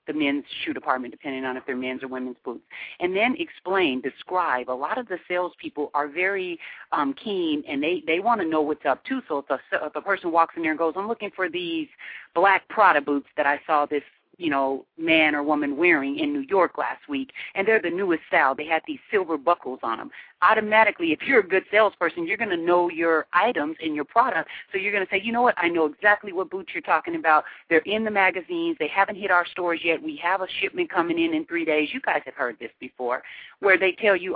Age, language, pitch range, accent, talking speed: 40-59, English, 155-200 Hz, American, 240 wpm